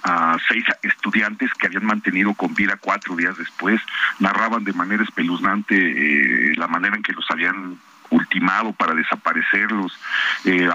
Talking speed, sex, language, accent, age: 145 wpm, male, Spanish, Mexican, 50-69